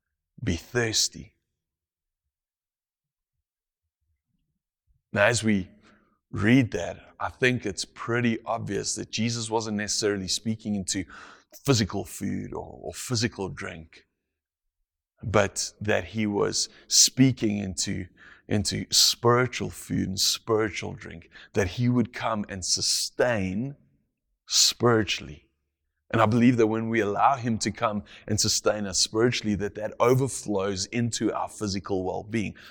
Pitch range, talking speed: 85-115 Hz, 120 wpm